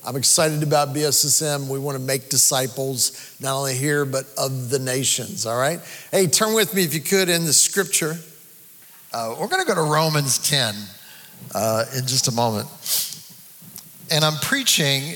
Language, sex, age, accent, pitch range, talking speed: English, male, 50-69, American, 135-165 Hz, 175 wpm